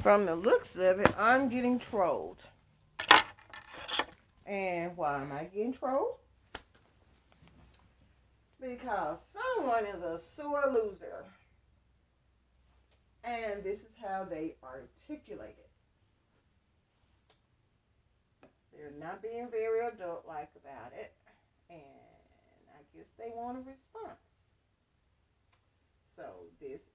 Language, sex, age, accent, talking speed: English, female, 40-59, American, 95 wpm